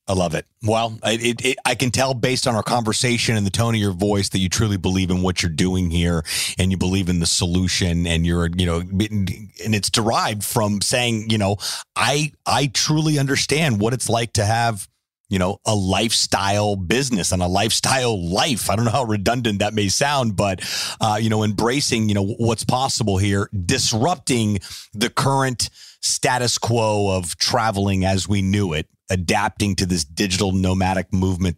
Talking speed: 190 wpm